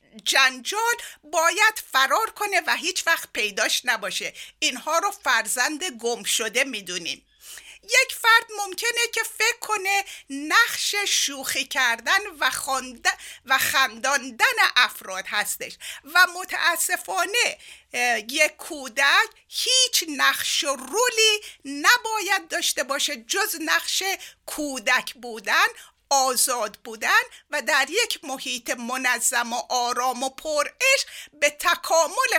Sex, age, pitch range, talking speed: female, 50-69, 260-390 Hz, 105 wpm